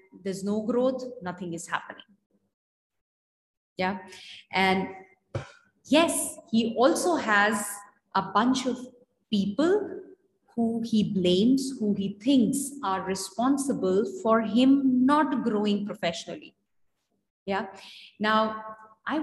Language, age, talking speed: English, 30-49, 100 wpm